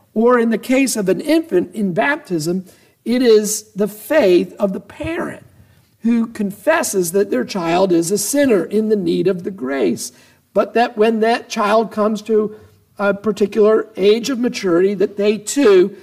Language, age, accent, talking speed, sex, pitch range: English, 50-69, American, 170 wpm, male, 175-230 Hz